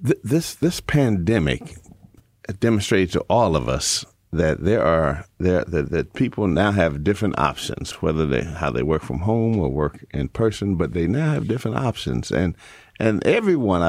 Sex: male